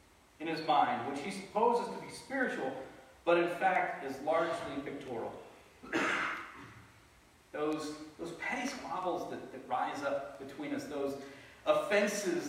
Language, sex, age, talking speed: English, male, 40-59, 130 wpm